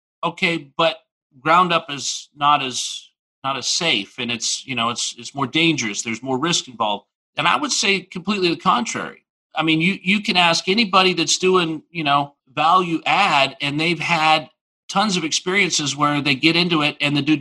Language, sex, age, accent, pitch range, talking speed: English, male, 50-69, American, 135-170 Hz, 195 wpm